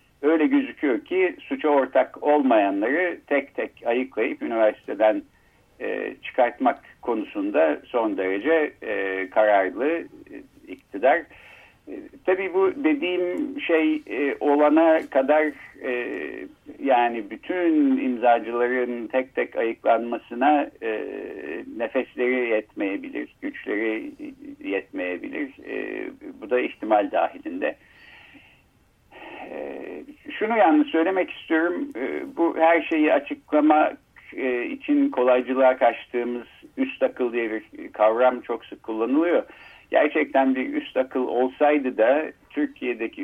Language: Turkish